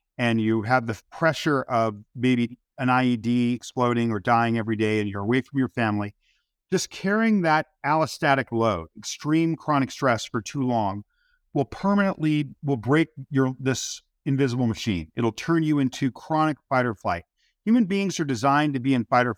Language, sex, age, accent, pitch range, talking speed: English, male, 50-69, American, 120-155 Hz, 170 wpm